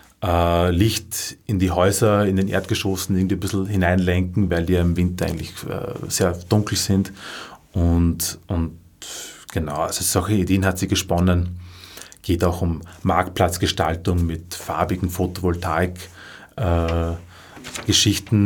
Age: 30-49